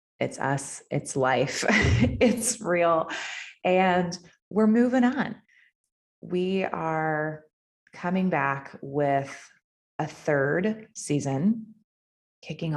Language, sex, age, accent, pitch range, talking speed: English, female, 30-49, American, 135-175 Hz, 90 wpm